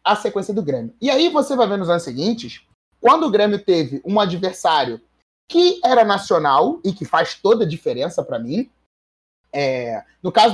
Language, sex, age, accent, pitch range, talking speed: Portuguese, male, 30-49, Brazilian, 170-265 Hz, 180 wpm